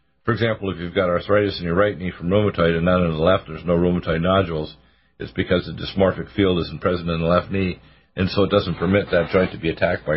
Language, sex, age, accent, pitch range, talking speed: English, male, 50-69, American, 85-100 Hz, 255 wpm